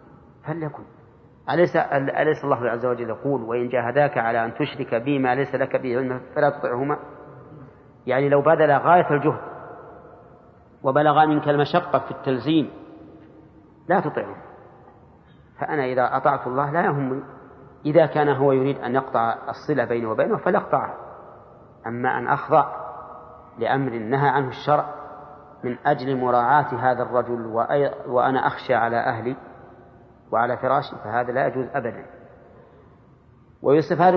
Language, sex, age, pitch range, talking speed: Arabic, male, 40-59, 130-150 Hz, 125 wpm